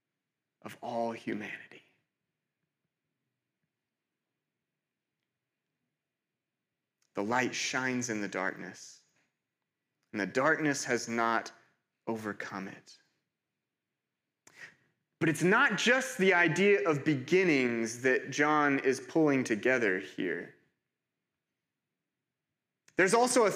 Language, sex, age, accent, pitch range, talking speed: English, male, 30-49, American, 135-195 Hz, 85 wpm